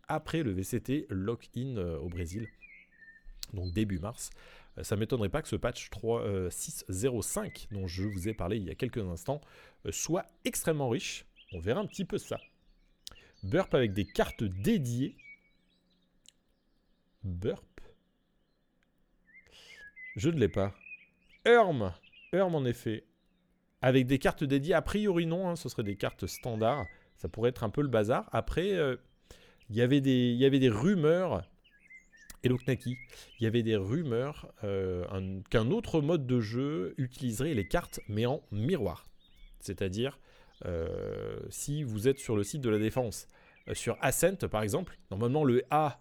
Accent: French